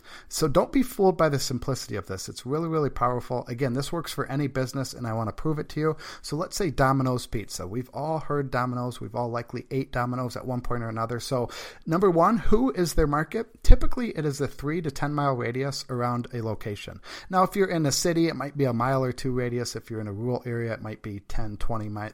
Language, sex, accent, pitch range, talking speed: English, male, American, 115-145 Hz, 245 wpm